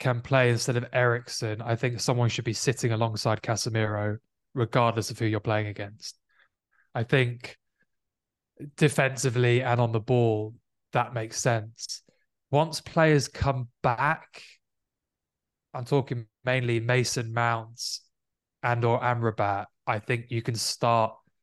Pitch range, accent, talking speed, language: 115-140 Hz, British, 130 wpm, English